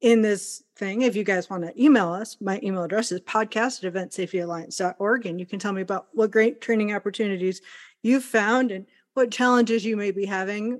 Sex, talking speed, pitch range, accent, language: female, 195 wpm, 190-240 Hz, American, English